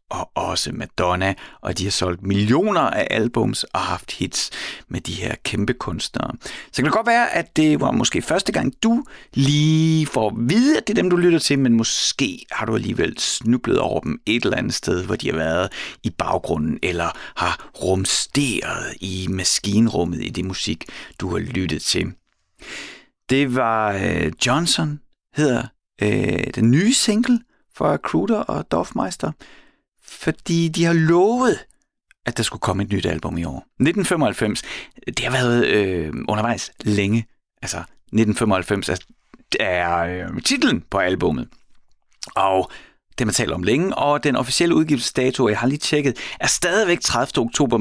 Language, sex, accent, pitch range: Danish, male, native, 95-145 Hz